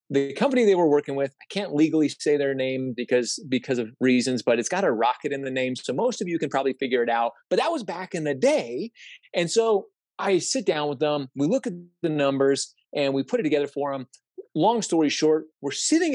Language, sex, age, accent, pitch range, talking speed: English, male, 30-49, American, 135-210 Hz, 240 wpm